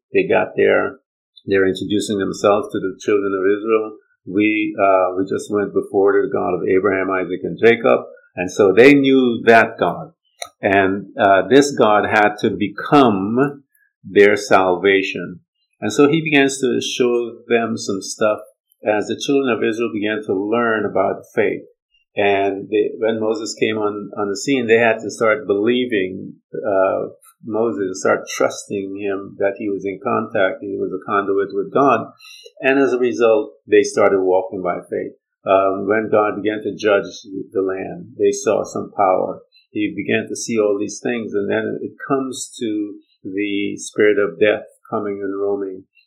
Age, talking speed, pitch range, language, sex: 50-69, 170 wpm, 100-155 Hz, English, male